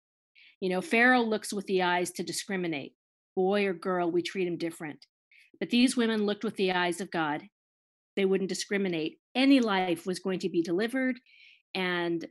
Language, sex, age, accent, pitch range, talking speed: English, female, 40-59, American, 185-255 Hz, 175 wpm